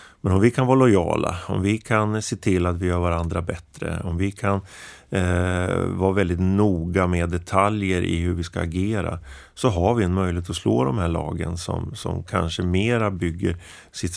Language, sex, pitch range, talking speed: Swedish, male, 85-100 Hz, 195 wpm